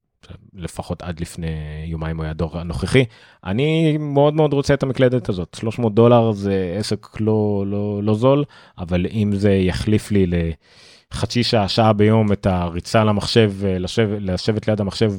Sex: male